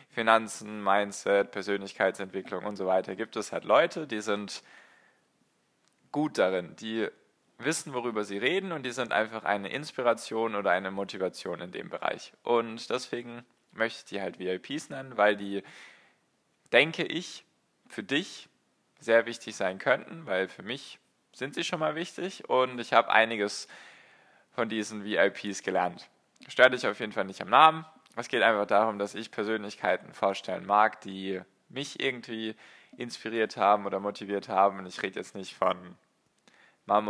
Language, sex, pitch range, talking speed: German, male, 100-115 Hz, 155 wpm